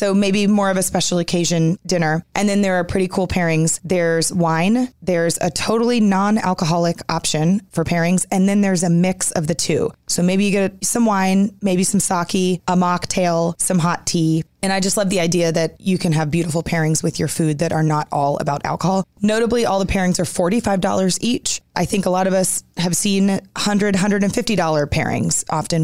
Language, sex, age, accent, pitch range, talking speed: English, female, 20-39, American, 165-195 Hz, 200 wpm